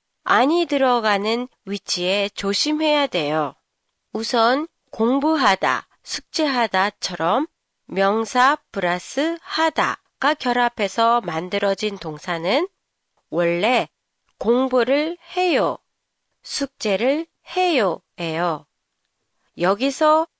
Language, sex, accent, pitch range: Japanese, female, Korean, 185-305 Hz